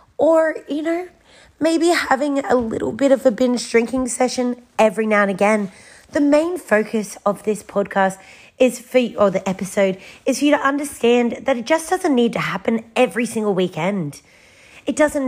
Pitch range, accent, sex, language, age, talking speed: 200-265 Hz, Australian, female, English, 30-49, 180 wpm